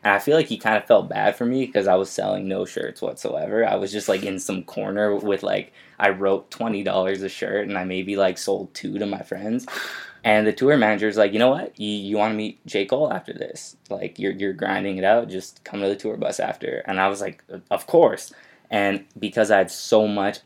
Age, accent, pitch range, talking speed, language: 20-39, American, 95-105 Hz, 240 wpm, English